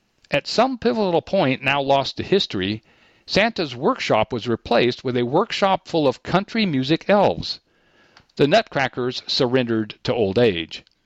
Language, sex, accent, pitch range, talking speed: English, male, American, 120-185 Hz, 140 wpm